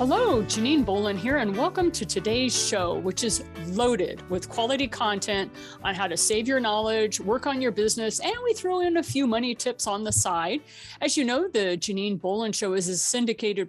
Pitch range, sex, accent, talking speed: 195-265 Hz, female, American, 200 wpm